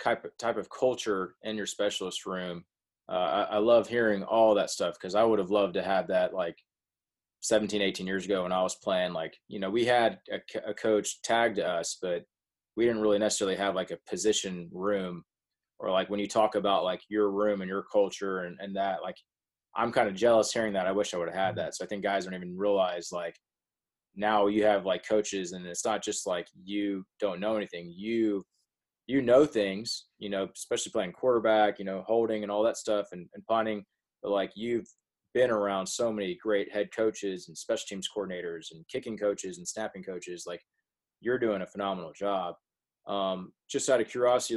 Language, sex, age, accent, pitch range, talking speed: English, male, 20-39, American, 95-110 Hz, 205 wpm